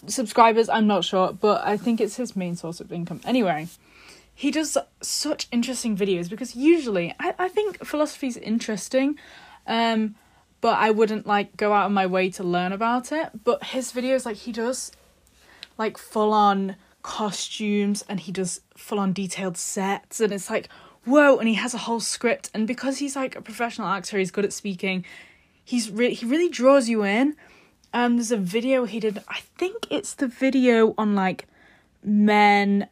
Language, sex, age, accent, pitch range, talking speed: English, female, 10-29, British, 190-235 Hz, 180 wpm